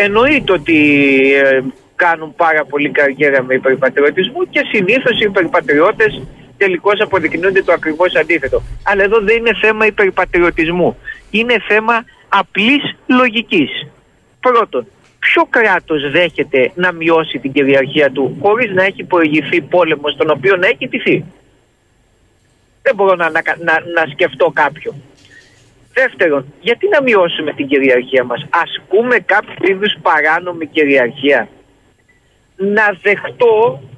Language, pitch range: Greek, 150-225 Hz